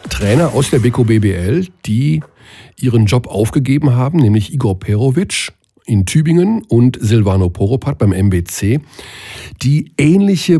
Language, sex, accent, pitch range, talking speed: German, male, German, 100-135 Hz, 120 wpm